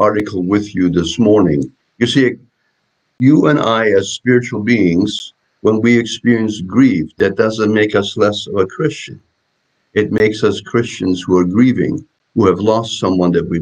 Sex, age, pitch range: male, 60-79, 100-130 Hz